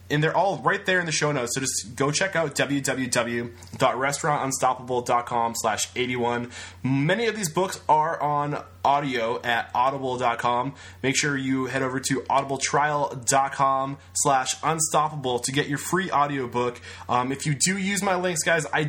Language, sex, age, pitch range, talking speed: English, male, 20-39, 115-145 Hz, 160 wpm